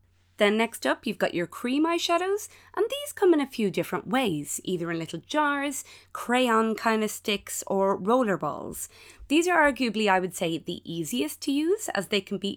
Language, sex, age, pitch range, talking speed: English, female, 20-39, 175-240 Hz, 195 wpm